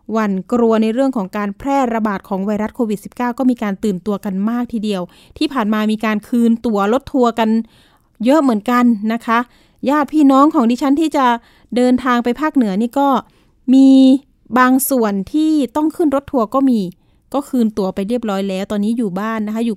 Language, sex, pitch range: Thai, female, 215-275 Hz